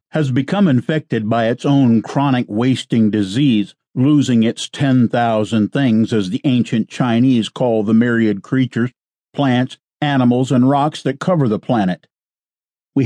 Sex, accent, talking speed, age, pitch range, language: male, American, 140 wpm, 50-69, 110-135 Hz, English